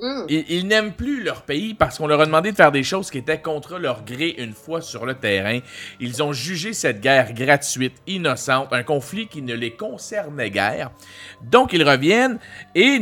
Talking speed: 195 wpm